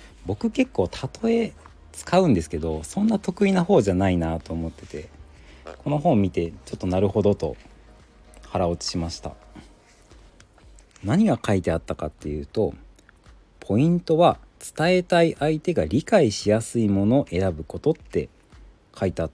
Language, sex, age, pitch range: Japanese, male, 40-59, 80-125 Hz